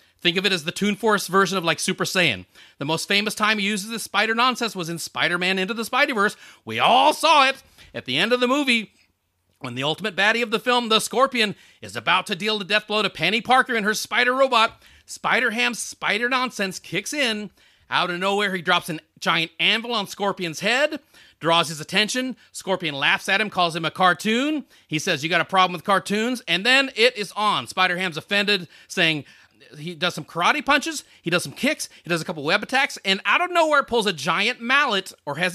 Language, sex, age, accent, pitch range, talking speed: English, male, 40-59, American, 175-235 Hz, 215 wpm